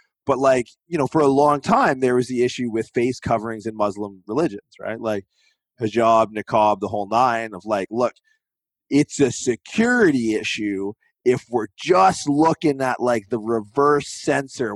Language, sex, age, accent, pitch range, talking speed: English, male, 30-49, American, 110-145 Hz, 165 wpm